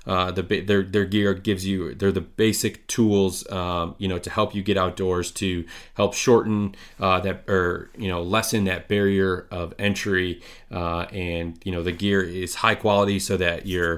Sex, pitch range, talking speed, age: male, 90-100 Hz, 190 wpm, 30-49